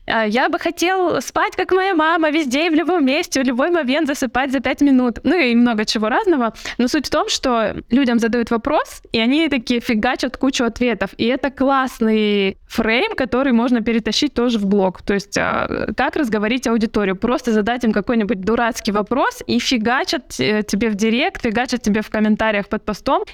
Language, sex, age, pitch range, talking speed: Russian, female, 20-39, 215-260 Hz, 180 wpm